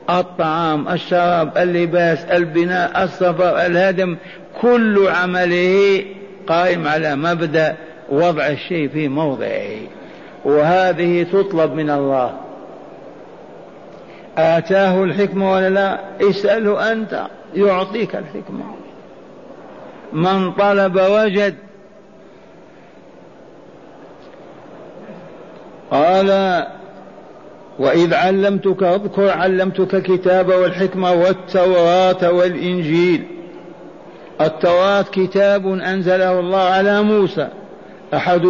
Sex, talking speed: male, 70 wpm